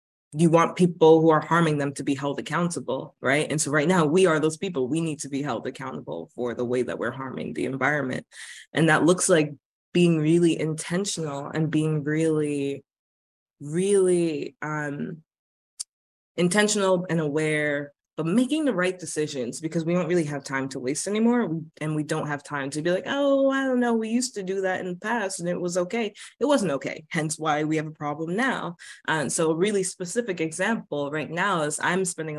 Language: English